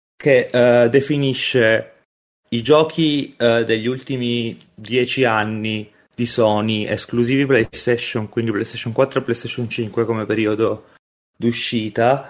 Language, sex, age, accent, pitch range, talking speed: Italian, male, 30-49, native, 105-120 Hz, 100 wpm